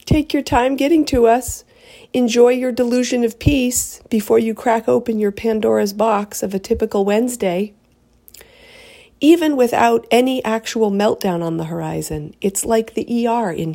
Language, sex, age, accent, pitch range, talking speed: English, female, 50-69, American, 170-230 Hz, 155 wpm